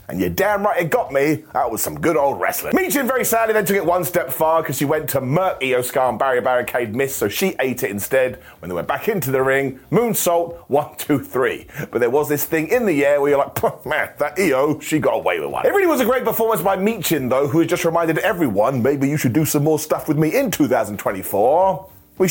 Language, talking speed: English, 250 wpm